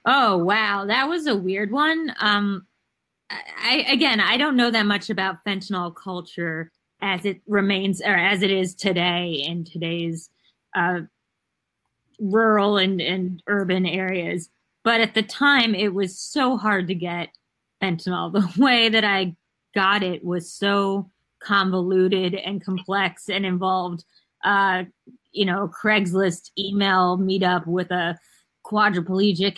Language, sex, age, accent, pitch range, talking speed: English, female, 20-39, American, 180-200 Hz, 135 wpm